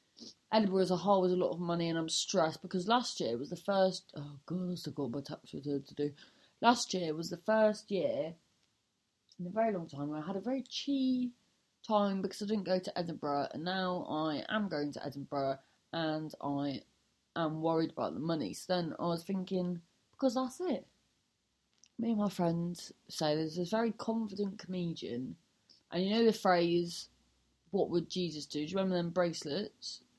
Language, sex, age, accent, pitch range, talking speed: English, female, 30-49, British, 160-220 Hz, 195 wpm